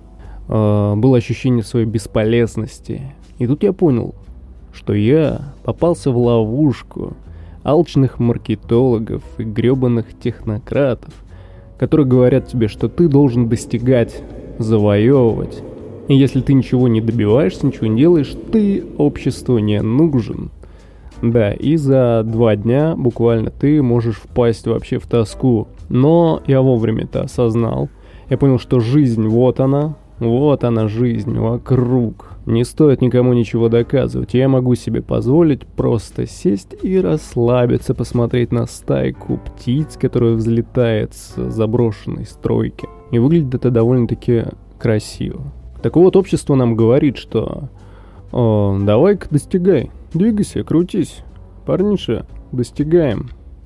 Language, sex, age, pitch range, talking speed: Russian, male, 20-39, 110-135 Hz, 120 wpm